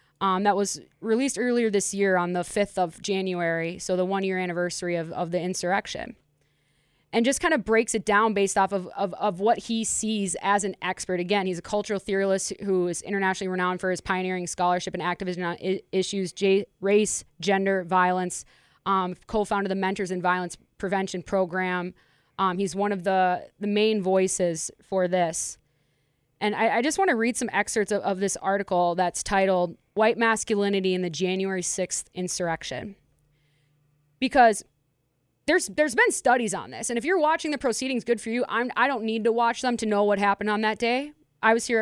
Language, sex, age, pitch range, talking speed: English, female, 20-39, 180-210 Hz, 190 wpm